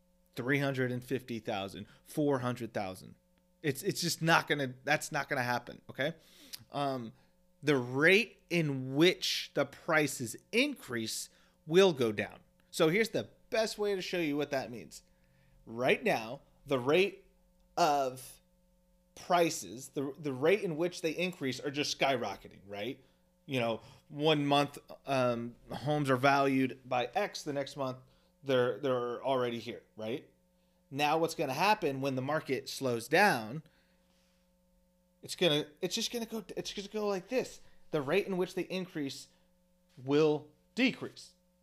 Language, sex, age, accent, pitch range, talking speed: English, male, 30-49, American, 135-180 Hz, 145 wpm